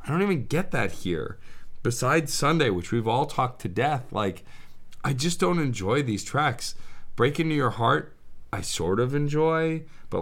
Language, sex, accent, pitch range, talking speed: English, male, American, 100-140 Hz, 175 wpm